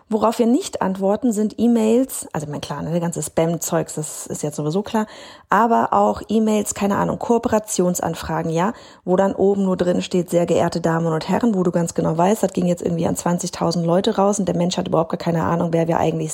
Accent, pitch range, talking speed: German, 165-195 Hz, 220 wpm